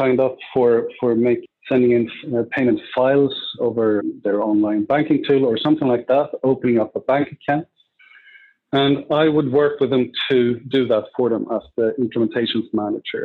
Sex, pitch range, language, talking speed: male, 115-135 Hz, English, 170 wpm